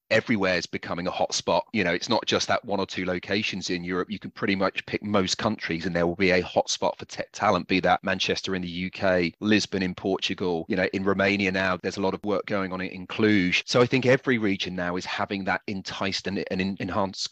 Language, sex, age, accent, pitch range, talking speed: English, male, 30-49, British, 90-110 Hz, 235 wpm